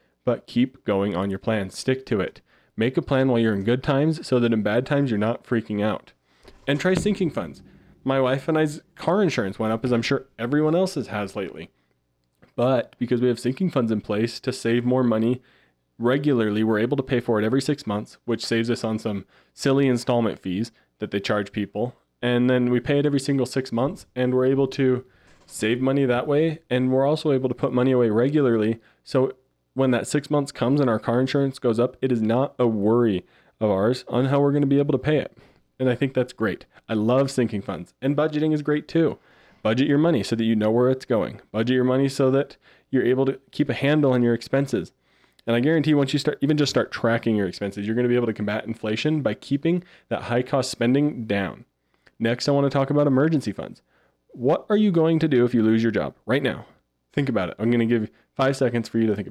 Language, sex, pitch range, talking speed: English, male, 110-140 Hz, 235 wpm